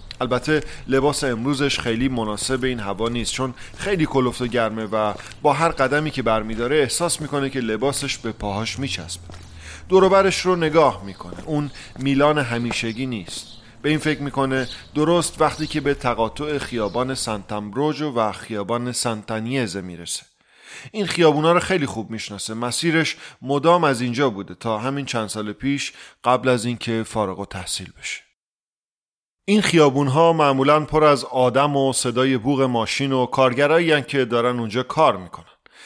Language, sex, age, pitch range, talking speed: English, male, 30-49, 115-145 Hz, 145 wpm